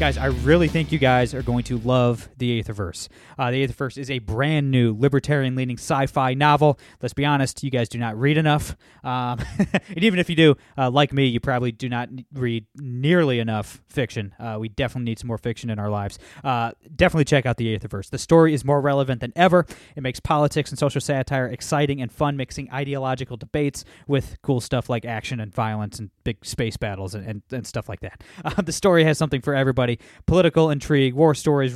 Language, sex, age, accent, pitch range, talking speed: English, male, 20-39, American, 120-145 Hz, 215 wpm